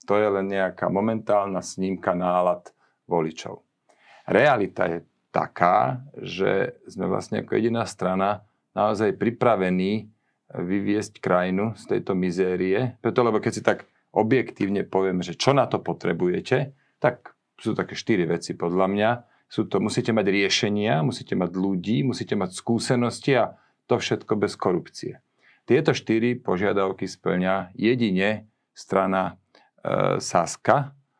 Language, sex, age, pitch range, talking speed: Slovak, male, 40-59, 95-115 Hz, 125 wpm